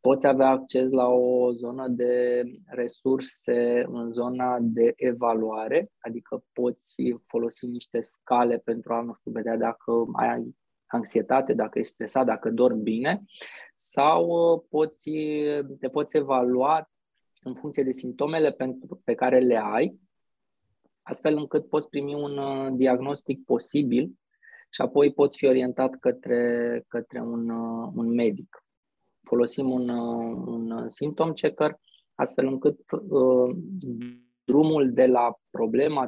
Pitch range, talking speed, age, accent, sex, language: 120-145 Hz, 120 wpm, 20-39, native, male, Romanian